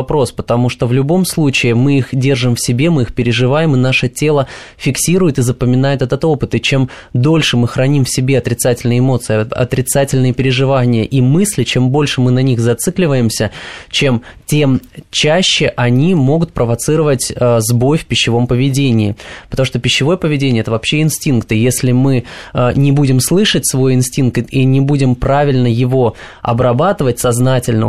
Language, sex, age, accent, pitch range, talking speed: Russian, male, 20-39, native, 125-150 Hz, 155 wpm